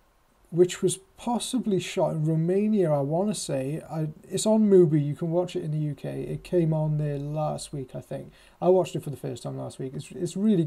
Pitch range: 130-160 Hz